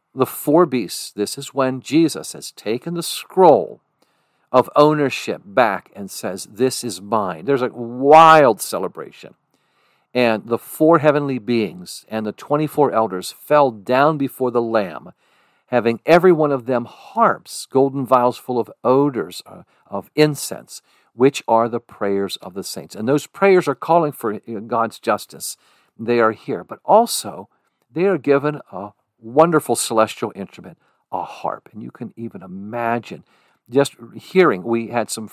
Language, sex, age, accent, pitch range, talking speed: English, male, 50-69, American, 110-140 Hz, 150 wpm